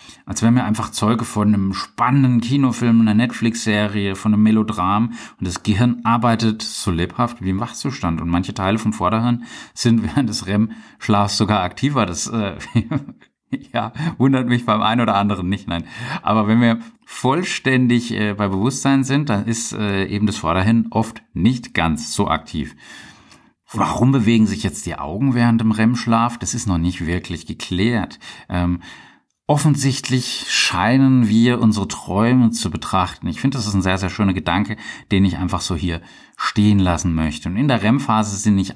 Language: German